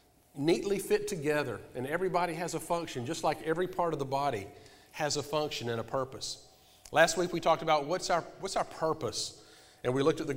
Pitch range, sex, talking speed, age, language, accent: 140-175 Hz, male, 210 wpm, 40-59, English, American